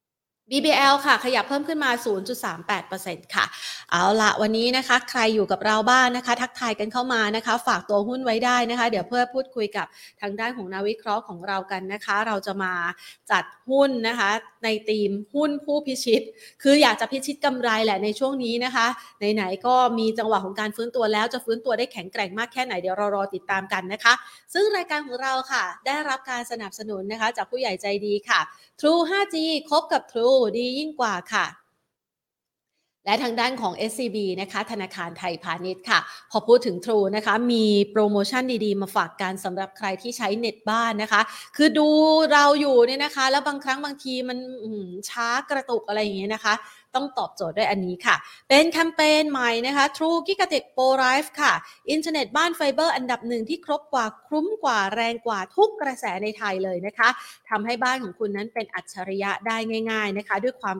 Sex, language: female, Thai